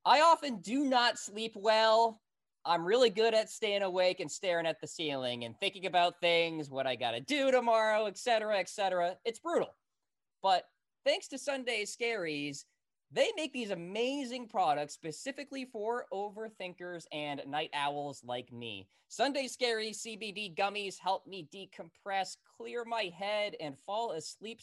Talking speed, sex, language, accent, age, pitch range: 155 wpm, male, English, American, 20-39, 165-230 Hz